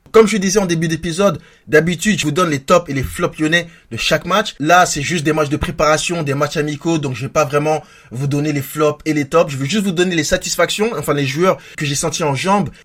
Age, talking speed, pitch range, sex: 20-39, 265 wpm, 145-180 Hz, male